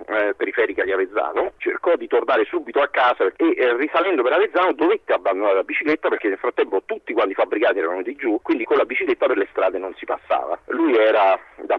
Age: 40-59